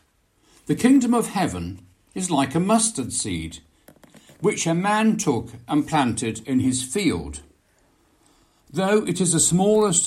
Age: 60-79